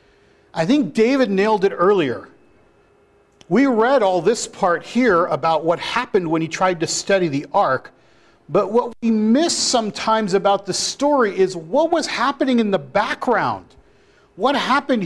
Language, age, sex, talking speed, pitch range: English, 40-59, male, 155 wpm, 155-225 Hz